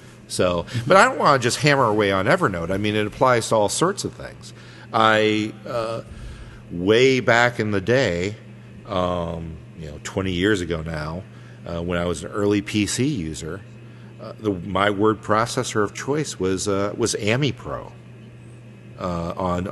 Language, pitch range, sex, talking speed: English, 90-115 Hz, male, 165 wpm